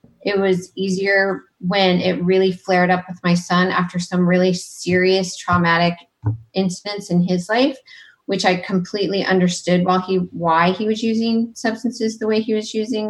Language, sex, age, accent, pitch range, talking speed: English, female, 30-49, American, 175-200 Hz, 165 wpm